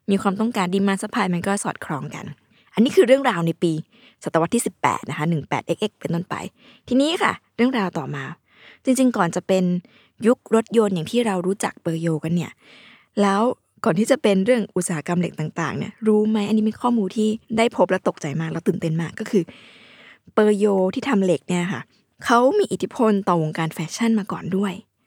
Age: 20-39